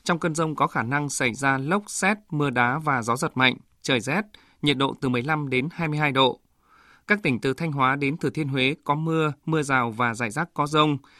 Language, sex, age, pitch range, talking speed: Vietnamese, male, 20-39, 130-160 Hz, 230 wpm